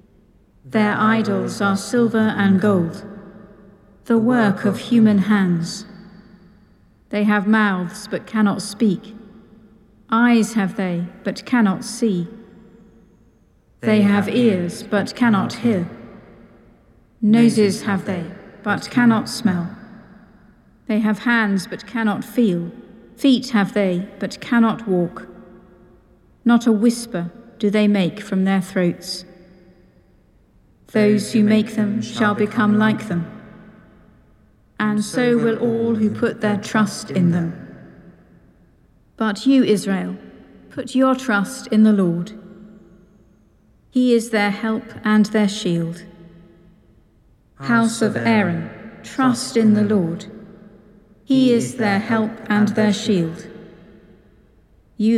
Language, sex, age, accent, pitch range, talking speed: English, female, 50-69, British, 195-225 Hz, 115 wpm